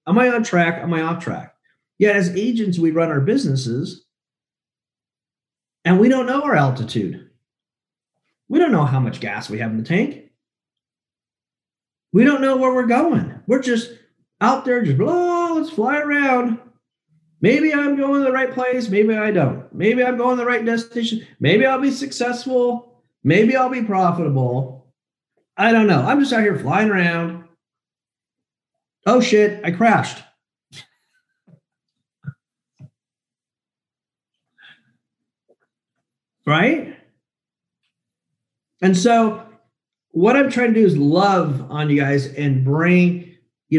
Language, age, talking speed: English, 40-59, 140 wpm